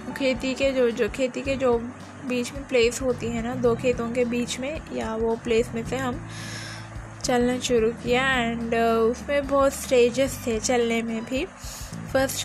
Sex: female